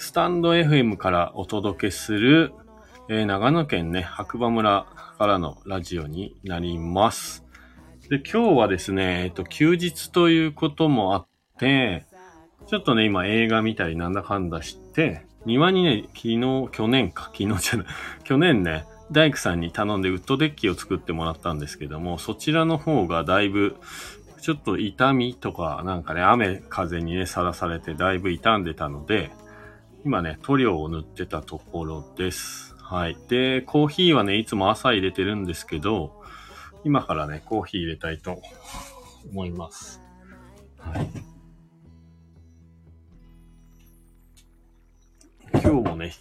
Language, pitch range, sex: Japanese, 85-120 Hz, male